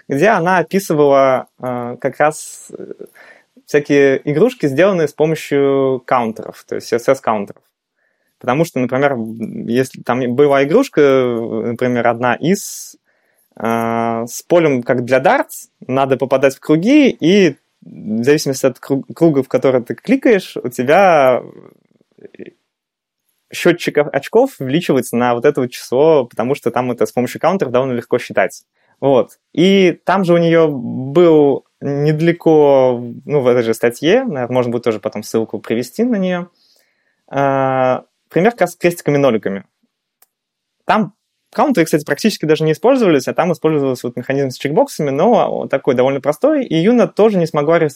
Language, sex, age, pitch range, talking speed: Russian, male, 20-39, 125-165 Hz, 145 wpm